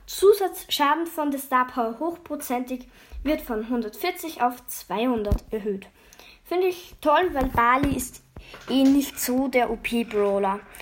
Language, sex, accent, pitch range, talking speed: German, female, German, 240-310 Hz, 120 wpm